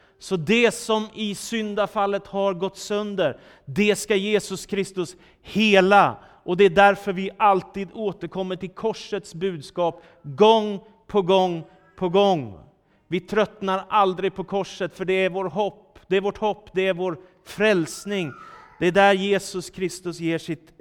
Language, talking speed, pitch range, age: Swedish, 155 wpm, 165-210 Hz, 30-49